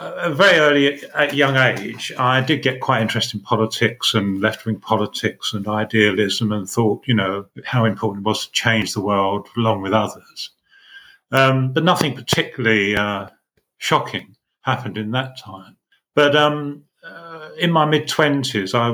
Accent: British